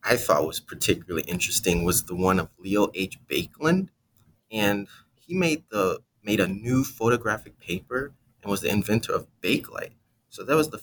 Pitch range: 95-115 Hz